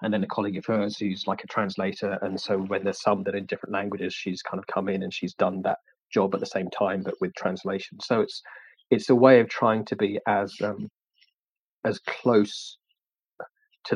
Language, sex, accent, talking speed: English, male, British, 215 wpm